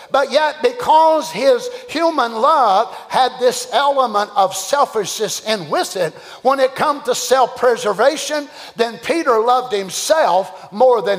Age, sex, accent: 50-69, male, American